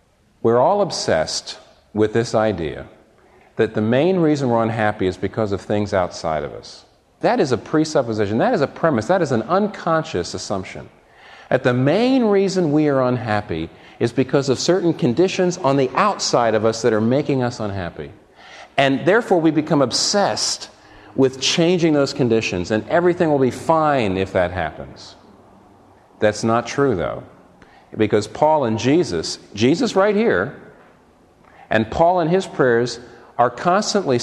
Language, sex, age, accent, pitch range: Korean, male, 40-59, American, 110-160 Hz